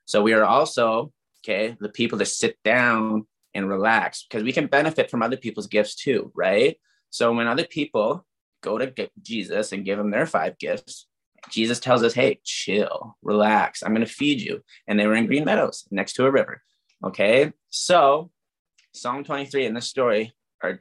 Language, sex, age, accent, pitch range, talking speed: English, male, 20-39, American, 110-140 Hz, 185 wpm